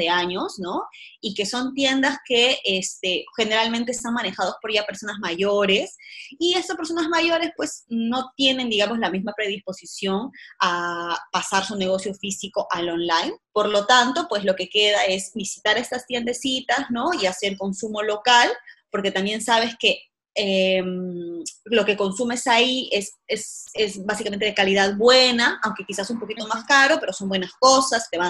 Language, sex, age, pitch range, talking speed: Spanish, female, 20-39, 190-245 Hz, 165 wpm